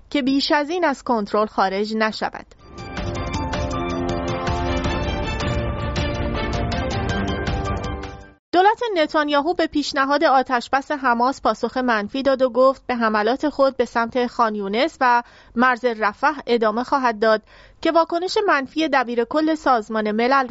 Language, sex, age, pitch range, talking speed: English, female, 30-49, 220-285 Hz, 110 wpm